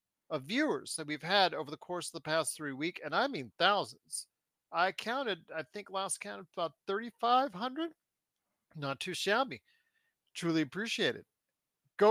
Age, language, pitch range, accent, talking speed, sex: 40-59, English, 165-230 Hz, American, 160 wpm, male